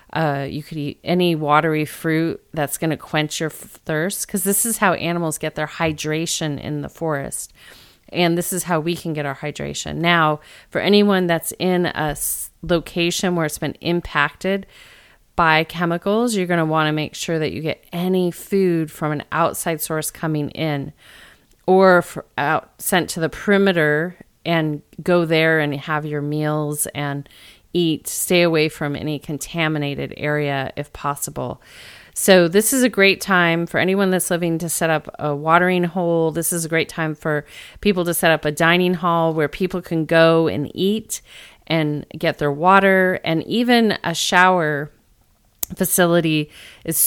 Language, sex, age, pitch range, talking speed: English, female, 30-49, 150-180 Hz, 165 wpm